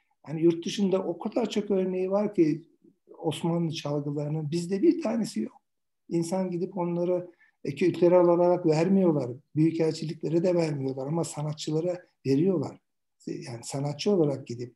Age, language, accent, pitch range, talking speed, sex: 60-79, Turkish, native, 135-180 Hz, 125 wpm, male